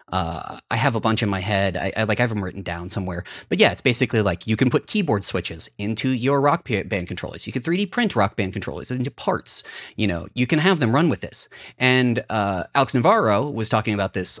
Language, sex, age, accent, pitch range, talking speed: English, male, 30-49, American, 100-135 Hz, 240 wpm